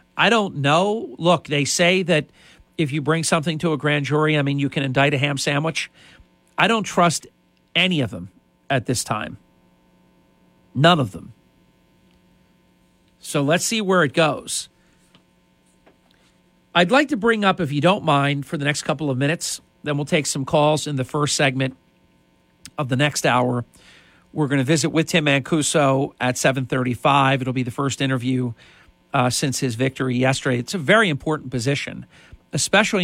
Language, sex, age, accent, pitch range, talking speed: English, male, 50-69, American, 125-160 Hz, 170 wpm